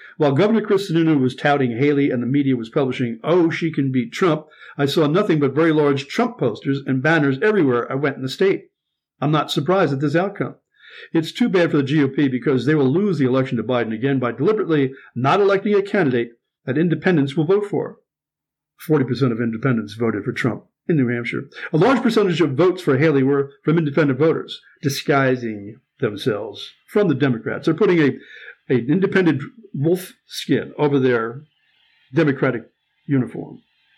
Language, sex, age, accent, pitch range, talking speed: English, male, 50-69, American, 135-170 Hz, 180 wpm